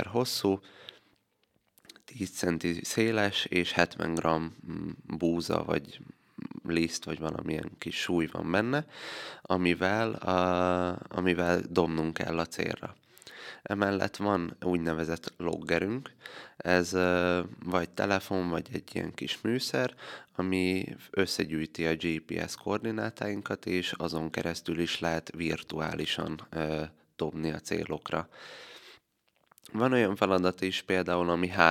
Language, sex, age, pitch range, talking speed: Hungarian, male, 30-49, 80-95 Hz, 105 wpm